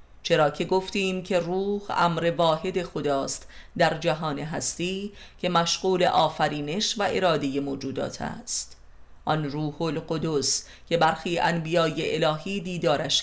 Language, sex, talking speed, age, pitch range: Persian, female, 120 wpm, 30-49, 140-180 Hz